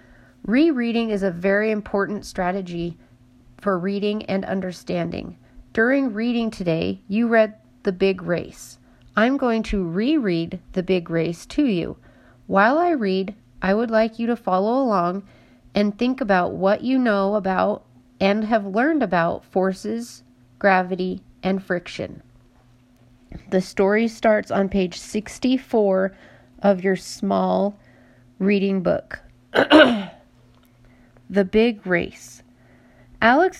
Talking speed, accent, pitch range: 120 wpm, American, 175-220 Hz